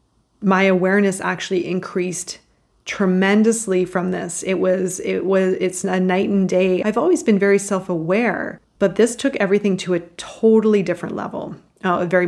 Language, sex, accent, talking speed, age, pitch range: English, female, American, 160 wpm, 30-49, 175-200 Hz